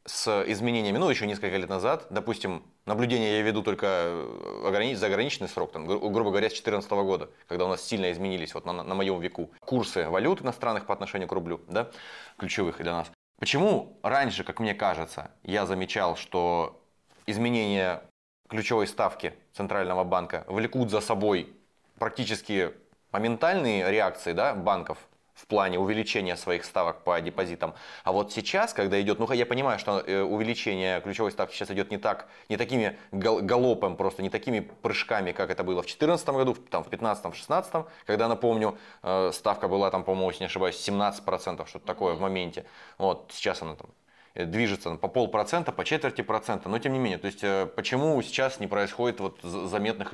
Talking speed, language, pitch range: 170 wpm, Russian, 95-115 Hz